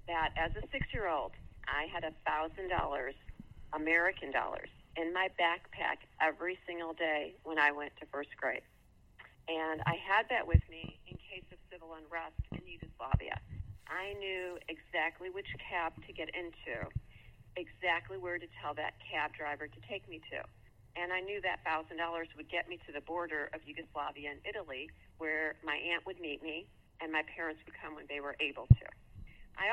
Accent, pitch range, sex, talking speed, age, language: American, 155-185 Hz, female, 170 wpm, 40-59, English